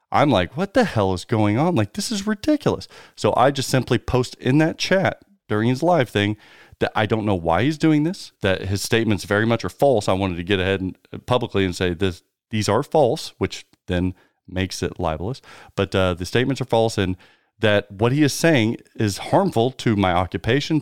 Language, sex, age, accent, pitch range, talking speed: English, male, 40-59, American, 100-135 Hz, 215 wpm